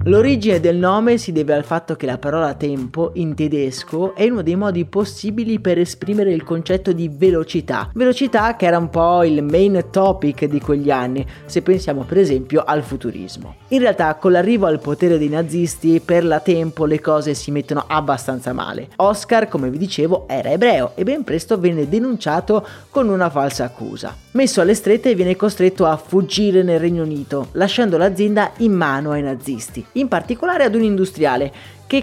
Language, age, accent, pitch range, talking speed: Italian, 30-49, native, 150-195 Hz, 180 wpm